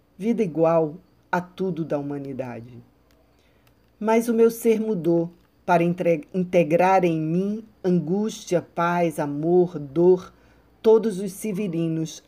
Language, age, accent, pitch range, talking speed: Portuguese, 50-69, Brazilian, 165-205 Hz, 110 wpm